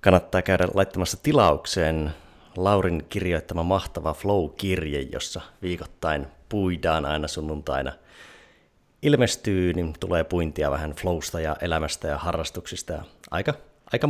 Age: 30-49